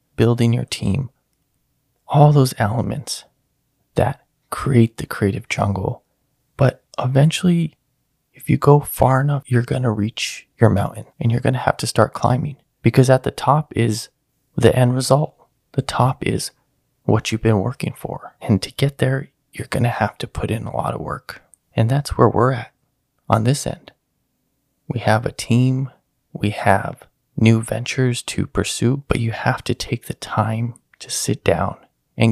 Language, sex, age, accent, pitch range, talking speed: English, male, 20-39, American, 115-135 Hz, 170 wpm